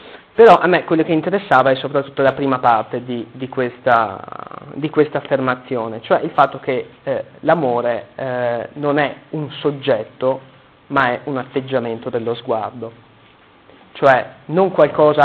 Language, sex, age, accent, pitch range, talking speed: Italian, male, 30-49, native, 125-145 Hz, 135 wpm